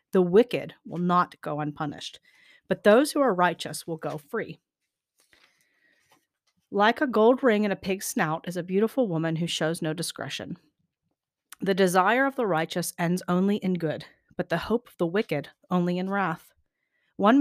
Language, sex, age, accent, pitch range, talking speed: English, female, 40-59, American, 170-220 Hz, 170 wpm